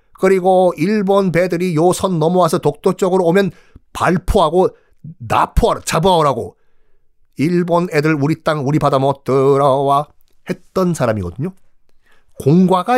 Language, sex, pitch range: Korean, male, 120-180 Hz